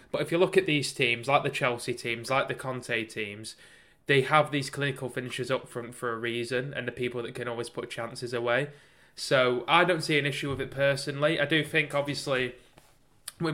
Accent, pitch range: British, 120-145 Hz